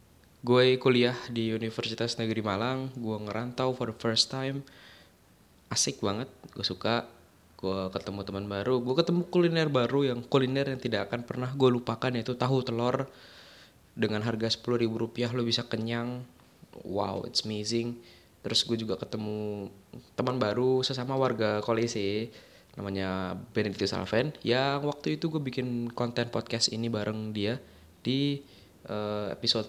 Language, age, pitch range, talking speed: Indonesian, 20-39, 100-120 Hz, 140 wpm